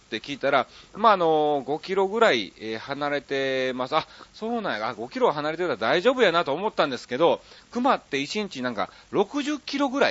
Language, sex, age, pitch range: Japanese, male, 40-59, 125-205 Hz